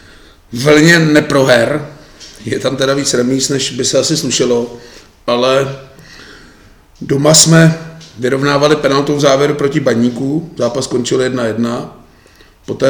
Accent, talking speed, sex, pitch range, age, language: native, 110 wpm, male, 115-135 Hz, 30-49, Czech